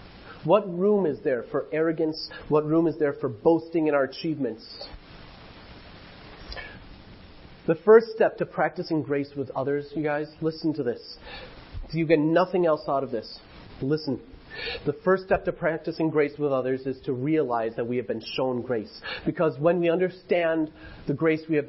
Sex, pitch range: male, 150-230 Hz